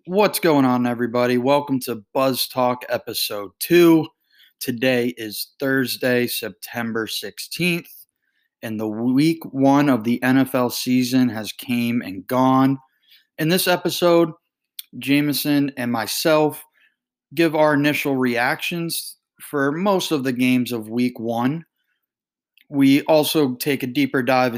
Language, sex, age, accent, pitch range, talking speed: English, male, 20-39, American, 120-155 Hz, 125 wpm